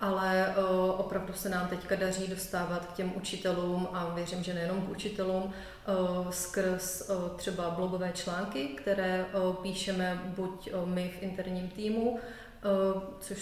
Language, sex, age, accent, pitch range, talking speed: Czech, female, 30-49, native, 180-195 Hz, 125 wpm